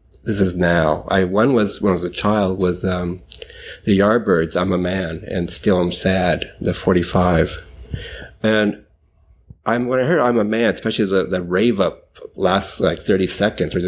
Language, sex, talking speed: English, male, 185 wpm